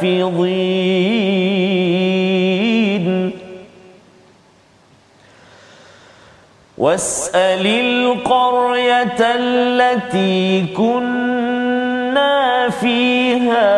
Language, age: Malayalam, 40-59